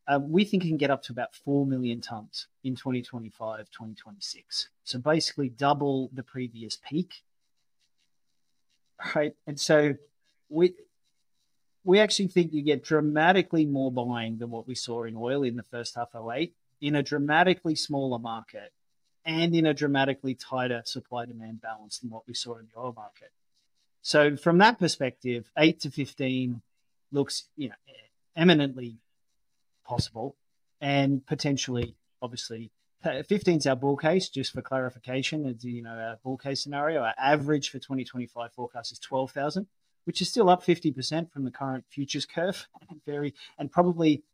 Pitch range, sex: 120-150 Hz, male